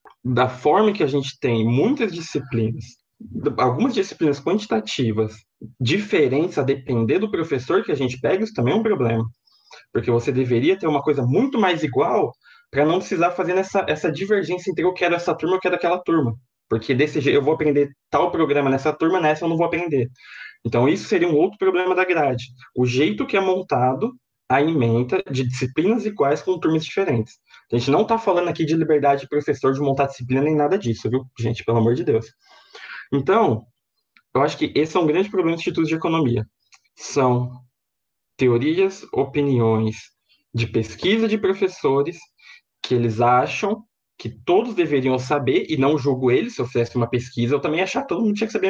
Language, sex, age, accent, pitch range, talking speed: Portuguese, male, 20-39, Brazilian, 125-180 Hz, 190 wpm